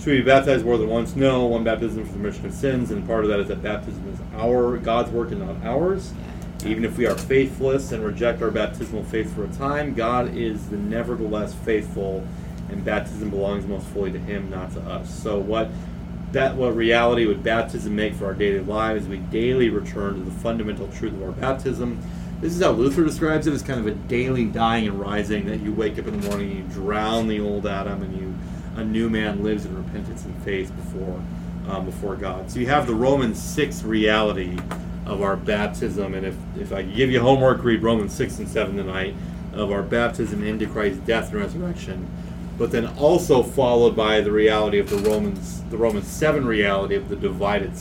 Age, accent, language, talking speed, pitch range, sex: 30-49, American, English, 210 wpm, 100-125 Hz, male